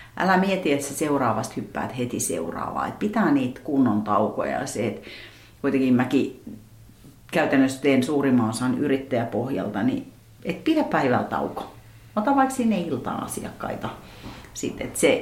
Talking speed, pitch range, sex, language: 125 wpm, 130-195 Hz, female, Finnish